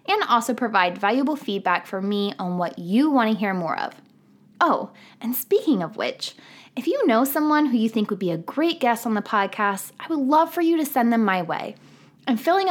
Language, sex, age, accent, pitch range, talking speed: English, female, 20-39, American, 180-250 Hz, 220 wpm